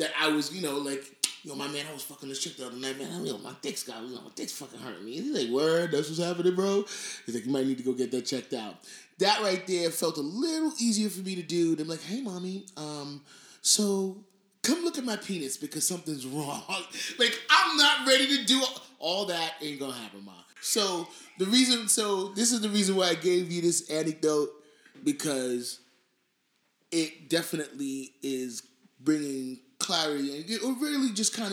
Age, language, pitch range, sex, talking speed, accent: 20-39, English, 140-215 Hz, male, 205 wpm, American